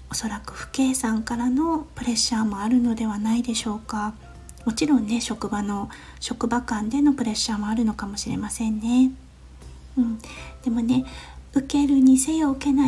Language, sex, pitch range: Japanese, female, 220-255 Hz